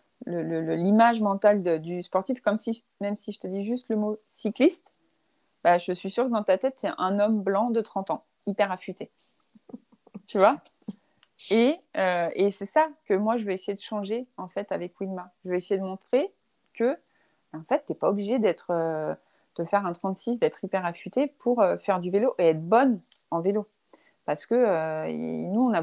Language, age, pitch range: French, 30-49, 180-225 Hz